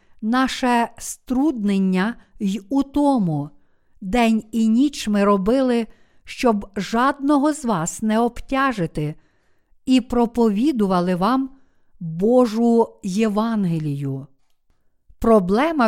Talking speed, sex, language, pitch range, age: 85 wpm, female, Ukrainian, 205-255 Hz, 50-69